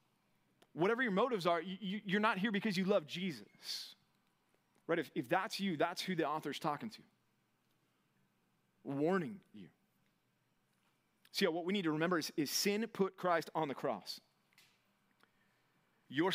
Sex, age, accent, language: male, 30-49, American, English